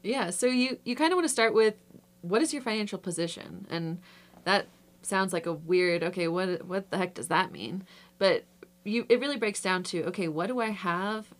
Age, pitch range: 20-39, 170-205 Hz